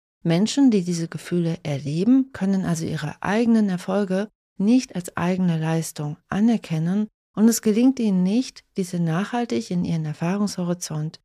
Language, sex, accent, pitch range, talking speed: German, female, German, 165-210 Hz, 135 wpm